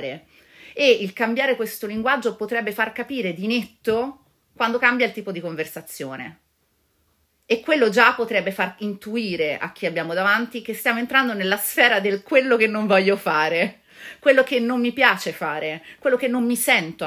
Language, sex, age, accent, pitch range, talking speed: Italian, female, 30-49, native, 155-215 Hz, 170 wpm